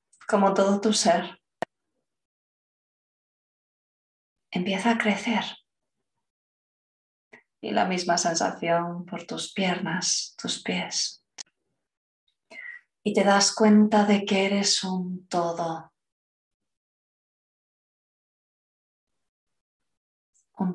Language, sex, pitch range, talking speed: Spanish, female, 175-205 Hz, 75 wpm